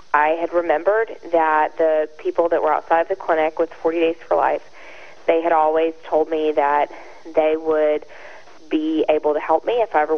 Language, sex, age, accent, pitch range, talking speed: English, female, 20-39, American, 155-165 Hz, 190 wpm